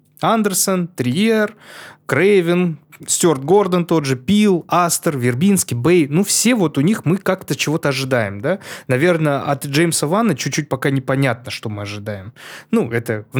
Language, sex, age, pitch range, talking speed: Russian, male, 20-39, 130-185 Hz, 150 wpm